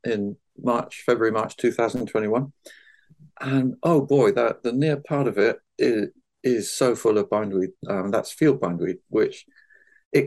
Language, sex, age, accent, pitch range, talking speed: English, male, 50-69, British, 125-195 Hz, 150 wpm